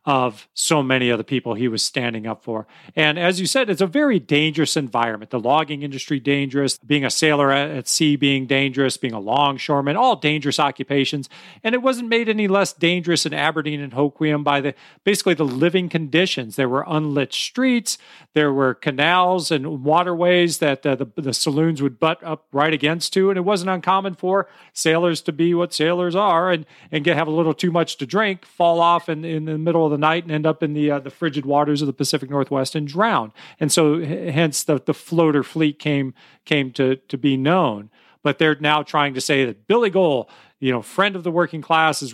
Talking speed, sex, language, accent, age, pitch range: 215 wpm, male, English, American, 40-59, 140-170 Hz